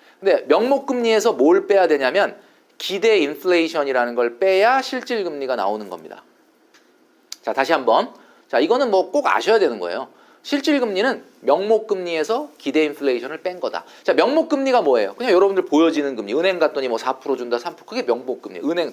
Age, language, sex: 40-59, Korean, male